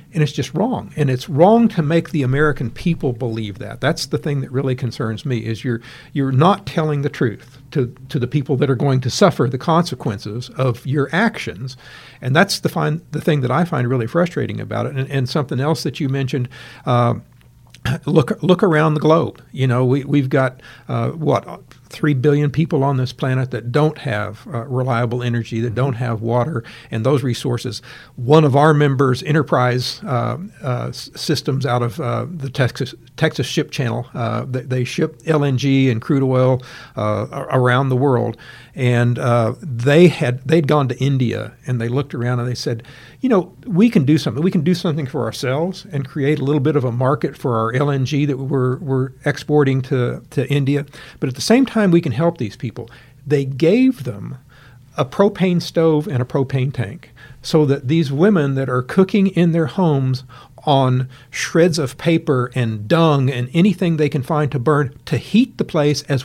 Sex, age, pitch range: male, 60-79, 125-155 Hz